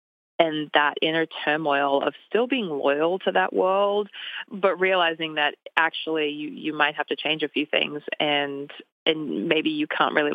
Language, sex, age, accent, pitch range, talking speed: English, female, 30-49, American, 150-190 Hz, 175 wpm